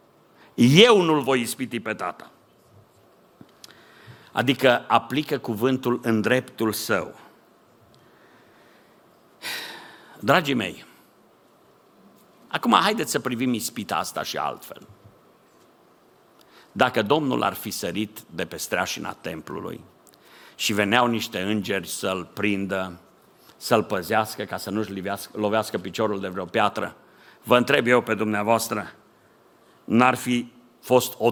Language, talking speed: Romanian, 105 wpm